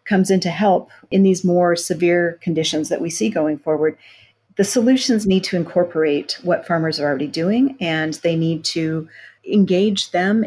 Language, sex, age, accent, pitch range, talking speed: English, female, 40-59, American, 165-215 Hz, 170 wpm